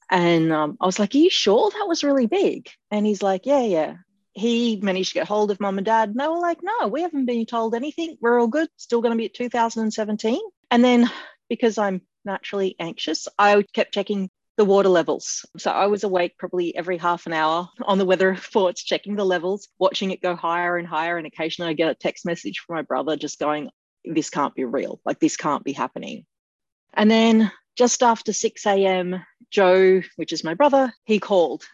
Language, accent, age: English, Australian, 30-49